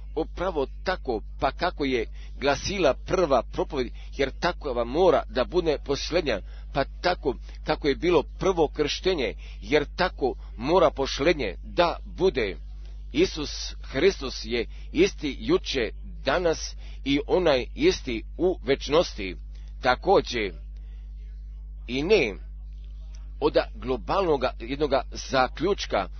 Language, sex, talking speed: Croatian, male, 105 wpm